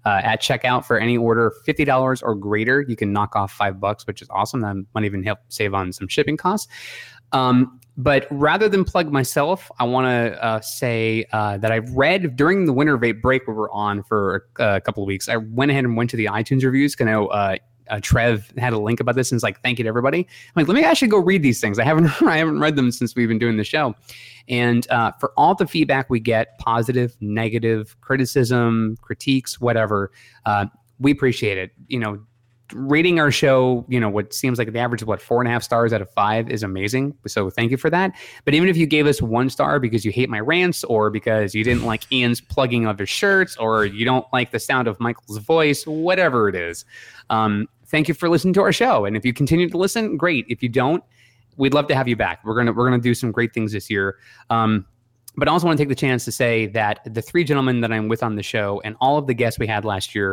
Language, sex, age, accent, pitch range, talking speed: English, male, 20-39, American, 110-135 Hz, 250 wpm